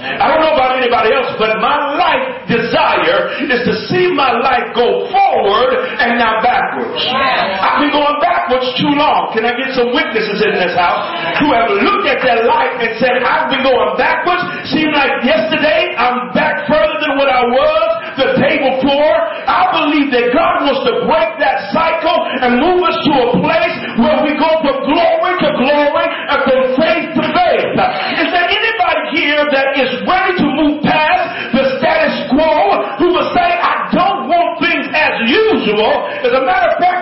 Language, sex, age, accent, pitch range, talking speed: English, male, 40-59, American, 260-340 Hz, 180 wpm